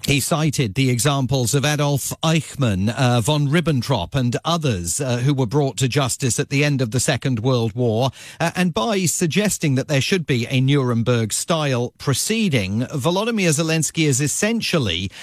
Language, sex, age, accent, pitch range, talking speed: English, male, 40-59, British, 125-155 Hz, 160 wpm